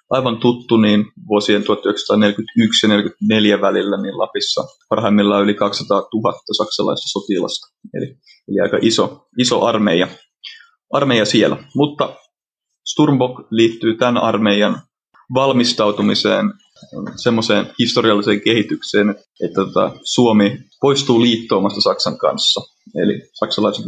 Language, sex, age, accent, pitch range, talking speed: Finnish, male, 30-49, native, 105-140 Hz, 100 wpm